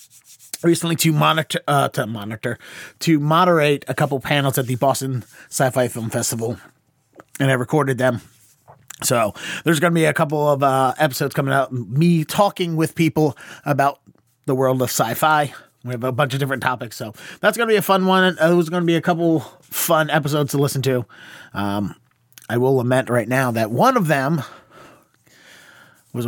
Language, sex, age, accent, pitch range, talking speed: English, male, 30-49, American, 115-155 Hz, 185 wpm